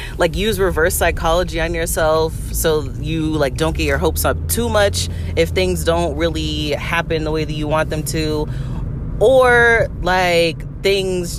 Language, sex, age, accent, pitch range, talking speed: English, female, 30-49, American, 135-180 Hz, 165 wpm